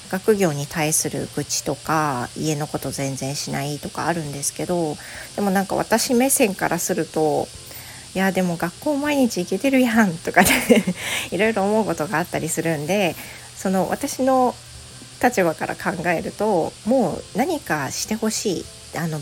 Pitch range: 155-225 Hz